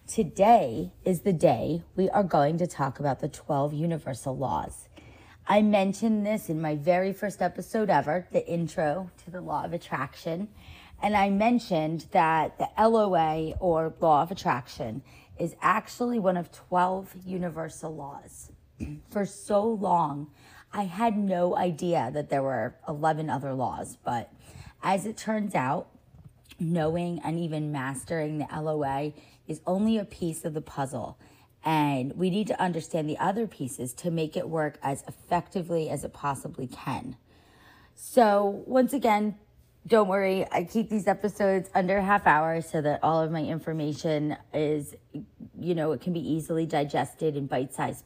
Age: 30-49